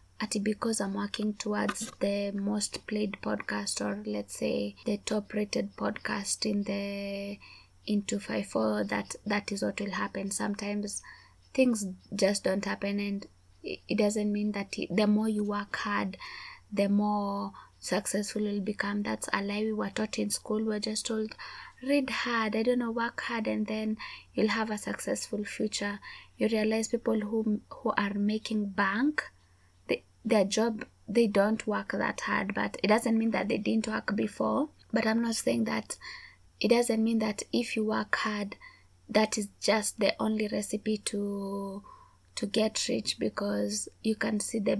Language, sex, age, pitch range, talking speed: English, female, 20-39, 200-220 Hz, 165 wpm